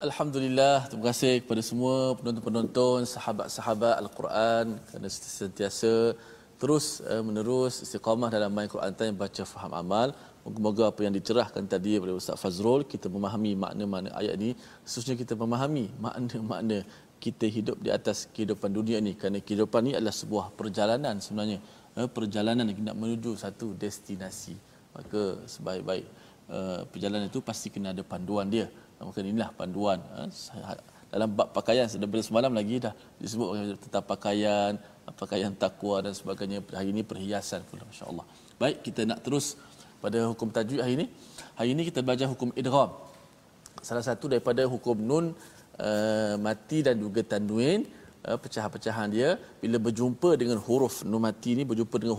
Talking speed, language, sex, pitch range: 145 wpm, Malayalam, male, 105-120 Hz